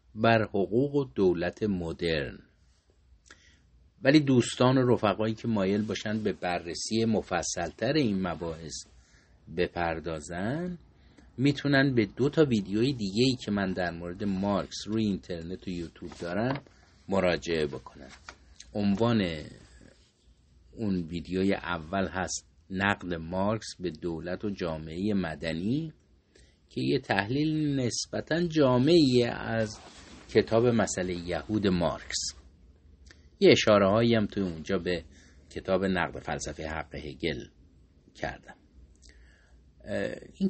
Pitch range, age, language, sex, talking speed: 80-120 Hz, 50-69, Persian, male, 105 wpm